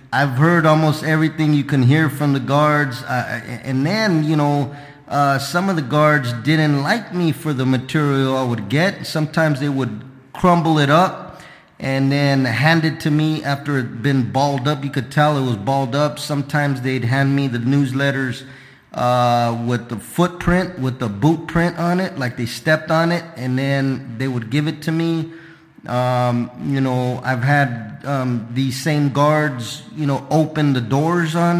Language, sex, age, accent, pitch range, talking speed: English, male, 20-39, American, 135-160 Hz, 185 wpm